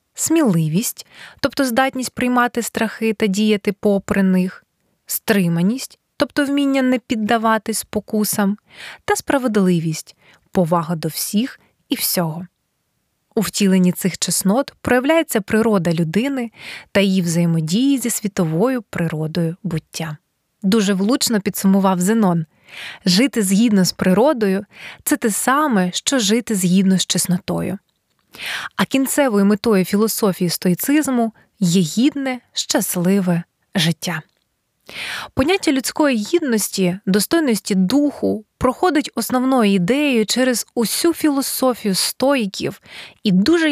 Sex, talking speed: female, 105 wpm